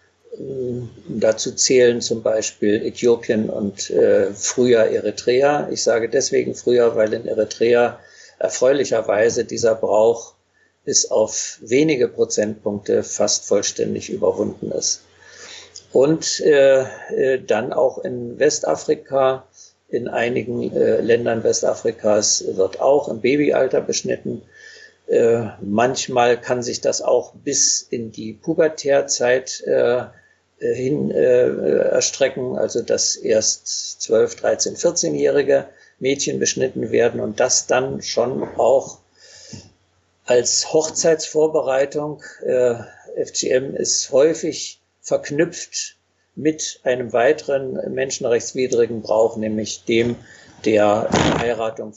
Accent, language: German, German